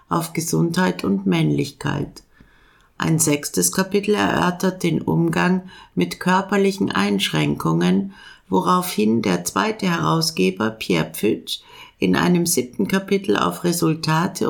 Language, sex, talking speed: German, female, 105 wpm